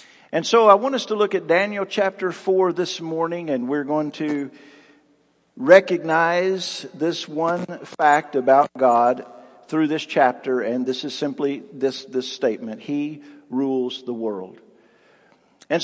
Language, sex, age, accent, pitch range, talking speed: English, male, 50-69, American, 155-200 Hz, 145 wpm